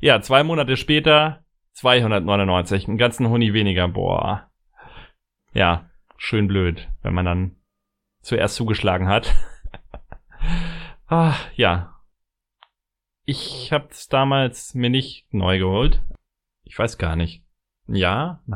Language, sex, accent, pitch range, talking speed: German, male, German, 100-130 Hz, 115 wpm